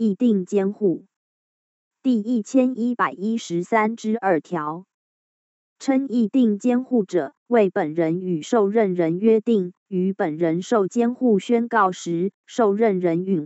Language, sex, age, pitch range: Chinese, female, 20-39, 175-230 Hz